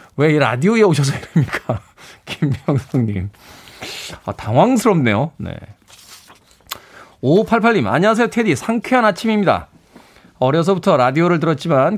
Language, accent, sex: Korean, native, male